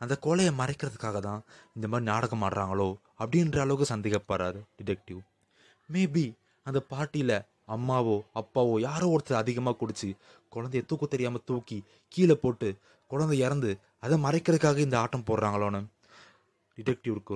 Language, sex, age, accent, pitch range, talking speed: Tamil, male, 20-39, native, 100-125 Hz, 120 wpm